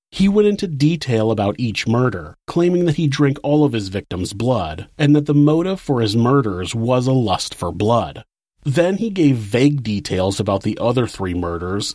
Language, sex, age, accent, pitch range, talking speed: English, male, 30-49, American, 105-145 Hz, 190 wpm